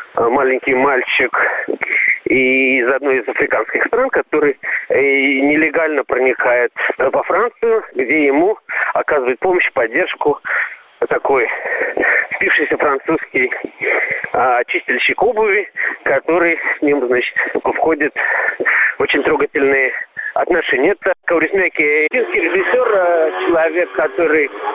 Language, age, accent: Russian, 40-59, native